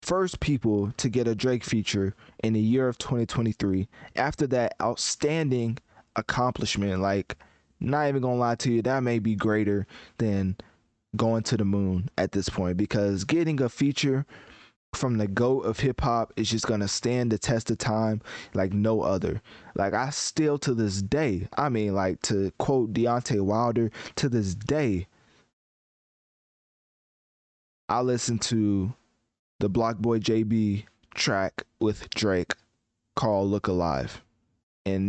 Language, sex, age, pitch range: English, male, 20-39, 105-130 Hz